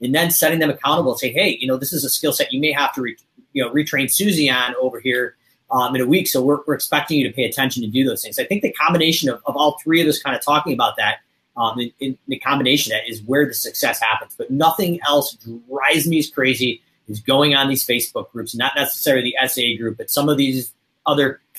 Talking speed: 255 wpm